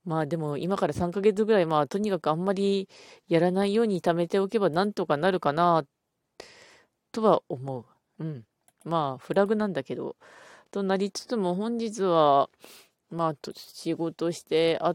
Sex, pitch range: female, 150-200 Hz